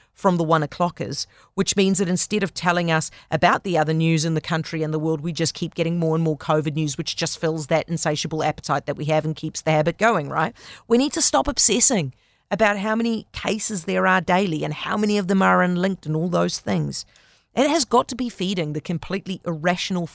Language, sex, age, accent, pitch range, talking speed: English, female, 40-59, Australian, 155-205 Hz, 230 wpm